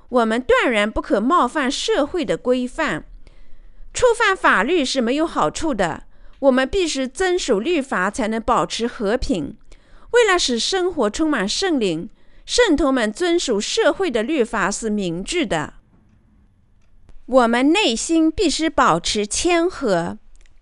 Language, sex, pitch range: Chinese, female, 225-355 Hz